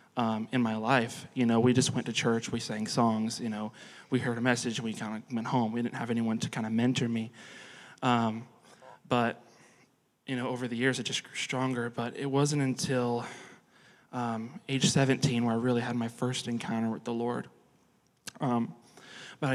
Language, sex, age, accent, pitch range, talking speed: English, male, 20-39, American, 115-130 Hz, 195 wpm